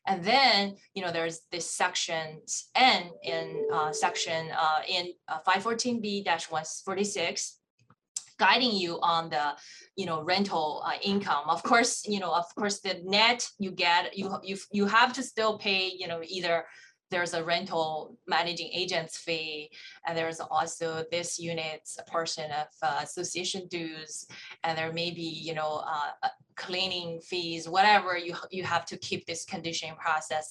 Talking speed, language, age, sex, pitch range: 155 wpm, English, 20-39, female, 160-185 Hz